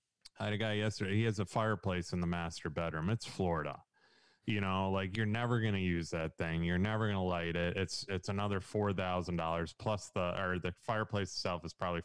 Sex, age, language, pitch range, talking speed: male, 20-39, English, 80-100 Hz, 215 wpm